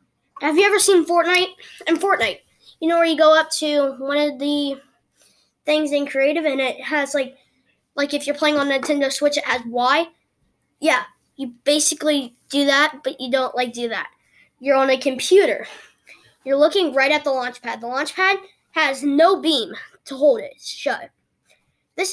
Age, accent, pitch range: 10-29, American, 270-330 Hz